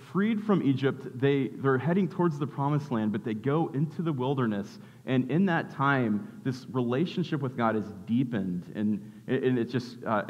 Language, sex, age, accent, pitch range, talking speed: English, male, 30-49, American, 115-150 Hz, 180 wpm